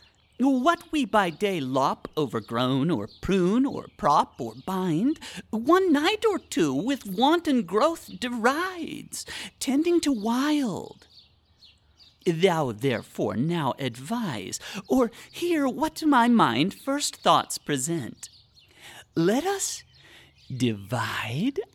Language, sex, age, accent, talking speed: English, male, 40-59, American, 110 wpm